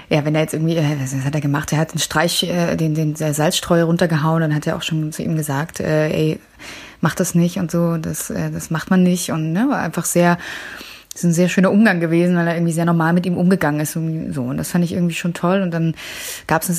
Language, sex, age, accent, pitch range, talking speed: German, female, 20-39, German, 160-185 Hz, 265 wpm